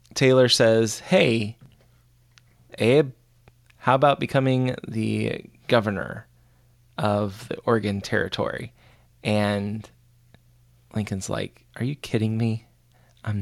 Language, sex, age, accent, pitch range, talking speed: English, male, 20-39, American, 105-120 Hz, 95 wpm